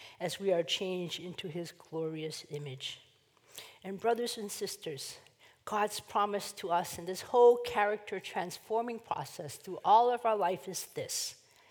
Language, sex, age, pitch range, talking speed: English, female, 50-69, 160-210 Hz, 150 wpm